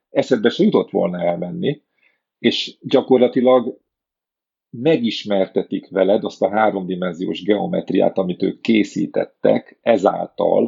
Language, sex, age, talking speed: Hungarian, male, 40-59, 95 wpm